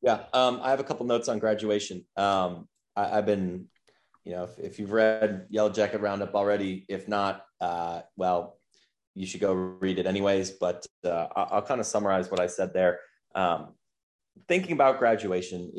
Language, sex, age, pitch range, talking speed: English, male, 30-49, 95-120 Hz, 175 wpm